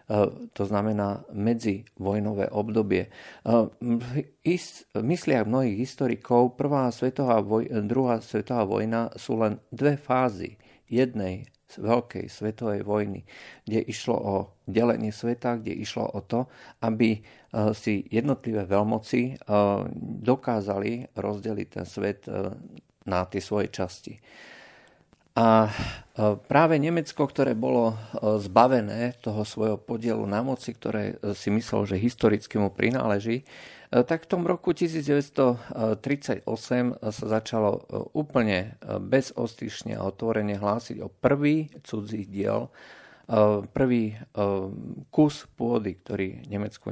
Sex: male